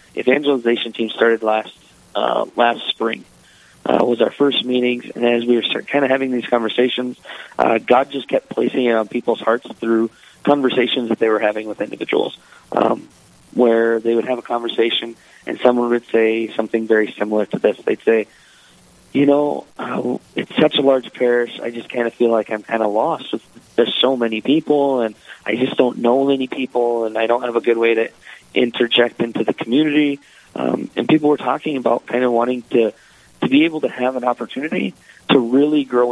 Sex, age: male, 30-49